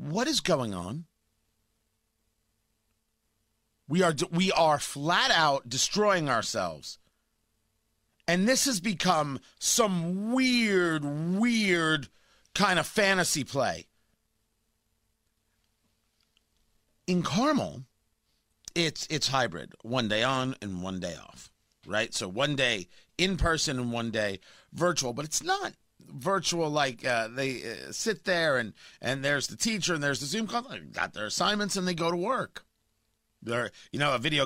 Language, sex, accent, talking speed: English, male, American, 140 wpm